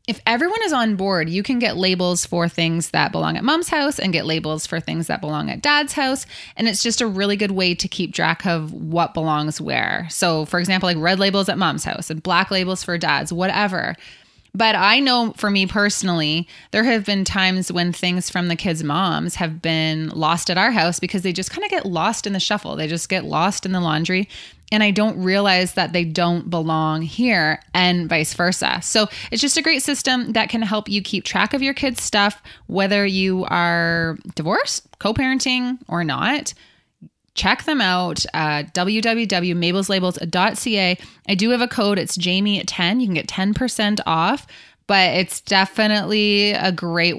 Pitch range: 170-210 Hz